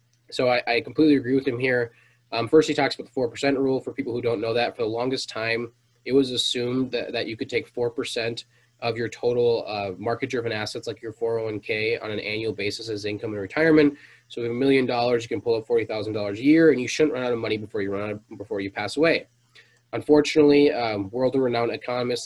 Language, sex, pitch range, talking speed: English, male, 115-135 Hz, 230 wpm